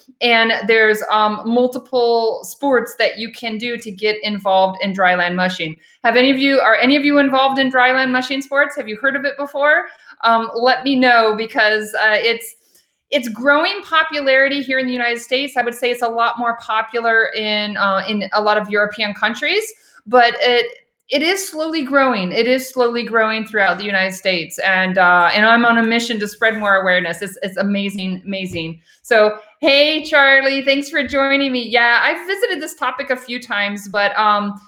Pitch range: 210-265 Hz